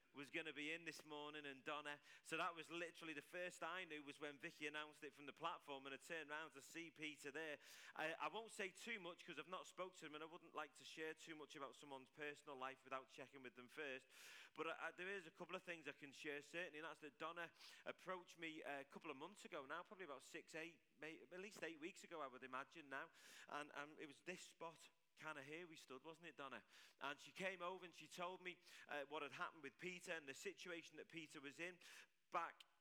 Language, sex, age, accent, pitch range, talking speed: English, male, 30-49, British, 140-170 Hz, 245 wpm